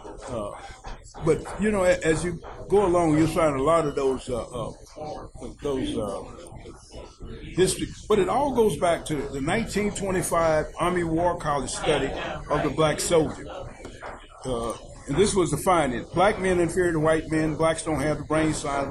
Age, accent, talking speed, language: 60-79, American, 170 wpm, English